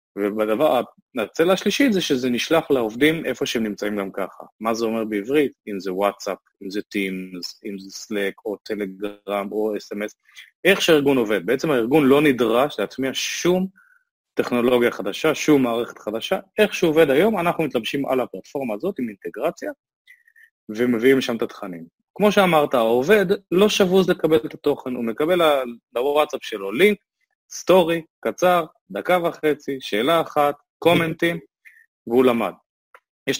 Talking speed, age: 145 wpm, 20-39